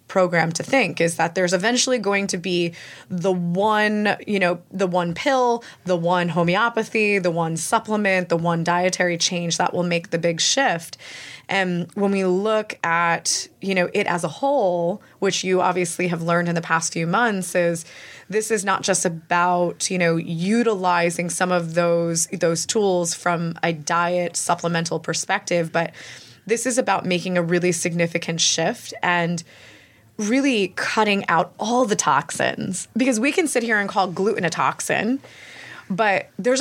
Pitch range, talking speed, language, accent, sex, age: 175-215 Hz, 165 wpm, English, American, female, 20-39